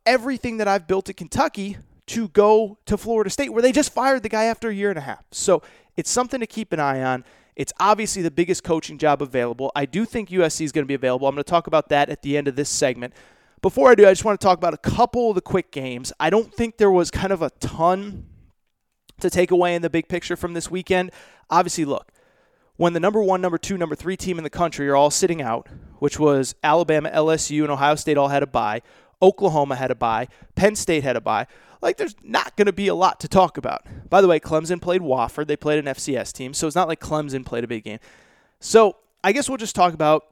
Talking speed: 250 wpm